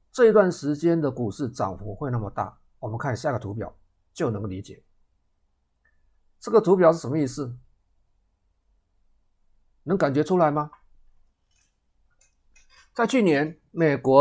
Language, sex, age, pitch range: Chinese, male, 50-69, 95-155 Hz